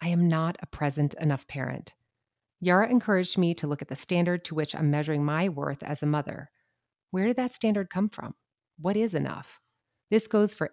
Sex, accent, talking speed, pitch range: female, American, 200 wpm, 145-195 Hz